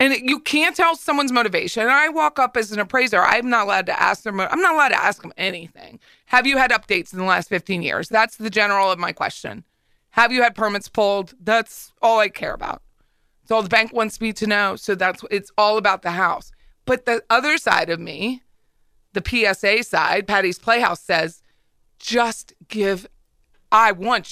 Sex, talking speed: female, 200 wpm